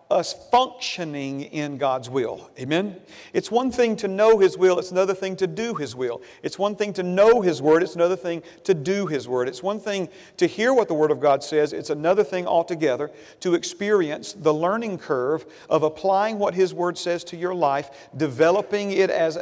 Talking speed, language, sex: 205 wpm, English, male